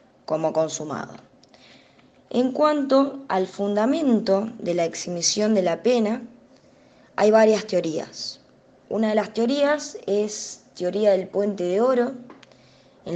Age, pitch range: 20-39, 180-260 Hz